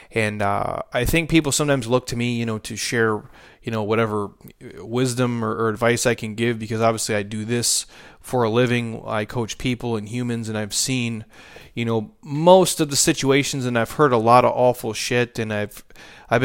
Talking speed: 205 wpm